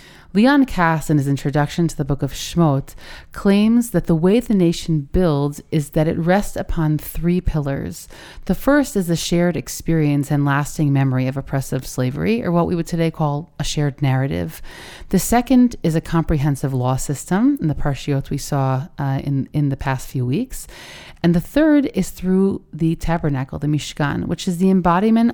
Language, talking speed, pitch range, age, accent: English, 180 wpm, 140-180 Hz, 30-49, American